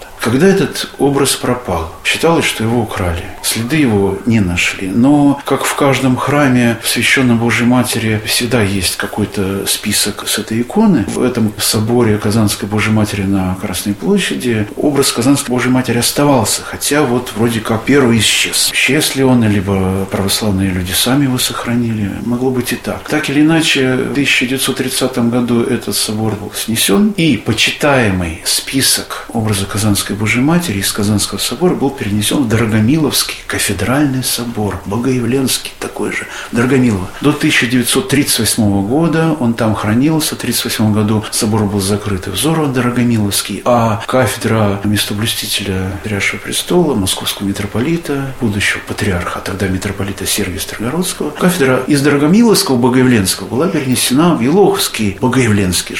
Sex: male